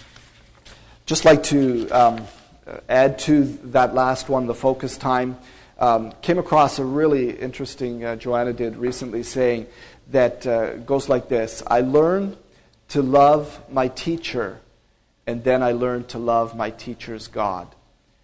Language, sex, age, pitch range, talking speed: English, male, 40-59, 120-135 Hz, 140 wpm